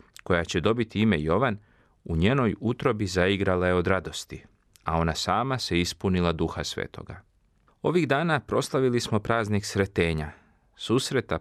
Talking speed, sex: 135 wpm, male